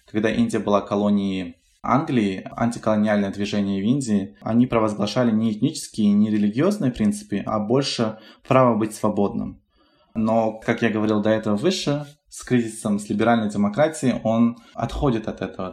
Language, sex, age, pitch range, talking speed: Russian, male, 20-39, 105-120 Hz, 140 wpm